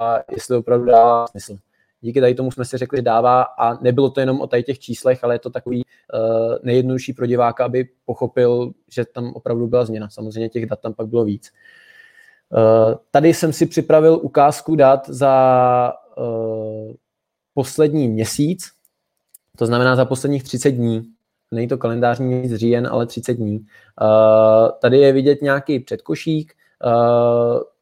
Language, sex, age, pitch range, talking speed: Czech, male, 20-39, 115-135 Hz, 160 wpm